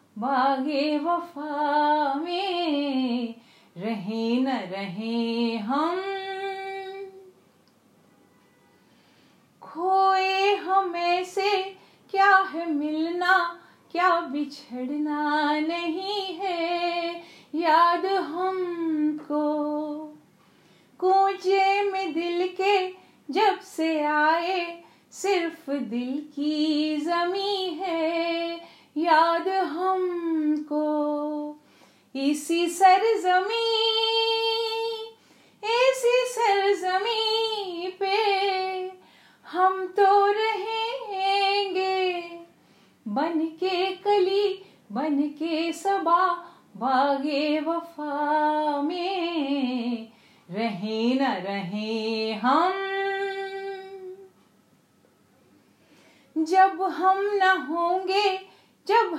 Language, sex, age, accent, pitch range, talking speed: English, female, 30-49, Indian, 300-385 Hz, 60 wpm